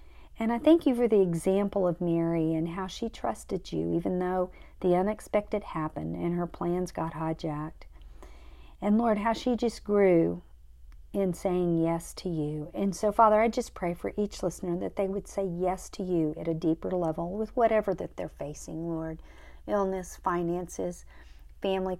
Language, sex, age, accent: English, female, 50-69, American